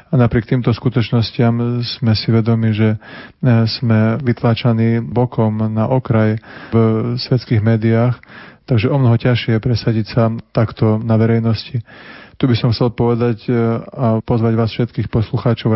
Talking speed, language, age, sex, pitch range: 135 wpm, Slovak, 30-49, male, 110-120 Hz